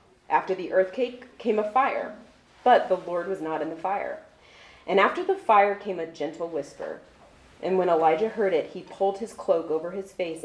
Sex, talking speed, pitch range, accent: female, 195 wpm, 165-225 Hz, American